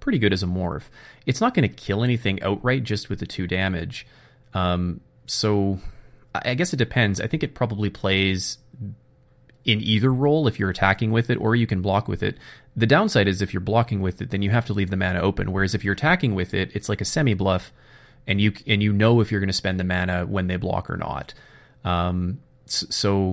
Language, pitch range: English, 95-125 Hz